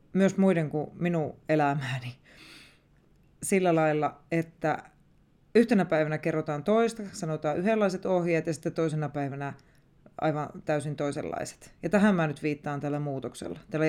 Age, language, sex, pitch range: 30-49, Finnish, female, 150-190 Hz